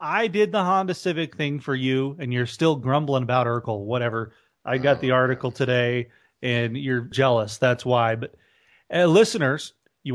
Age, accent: 30-49, American